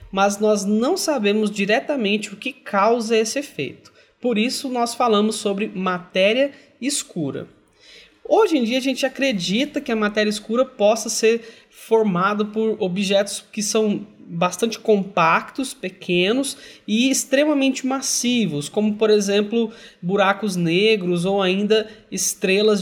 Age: 20-39